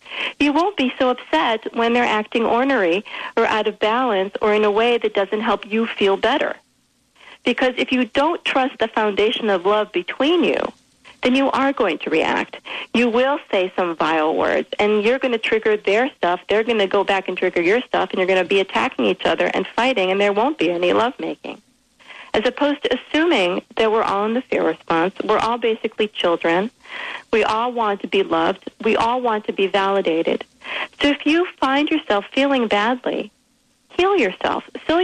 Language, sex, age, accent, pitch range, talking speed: English, female, 40-59, American, 205-270 Hz, 200 wpm